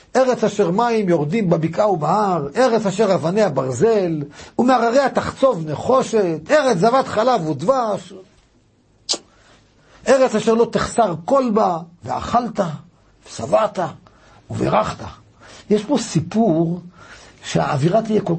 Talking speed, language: 105 wpm, Hebrew